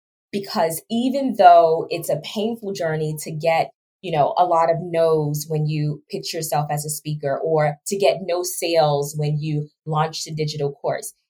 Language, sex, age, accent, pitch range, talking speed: English, female, 20-39, American, 160-210 Hz, 175 wpm